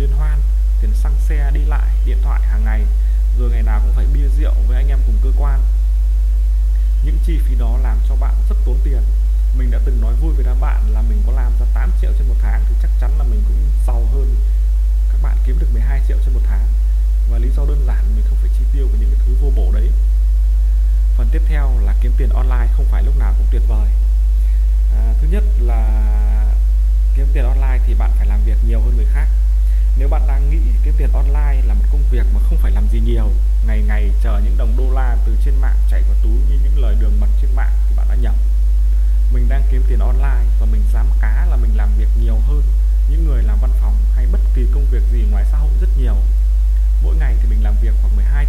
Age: 20-39